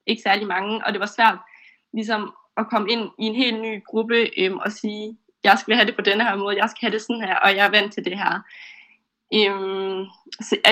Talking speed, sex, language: 235 wpm, female, Danish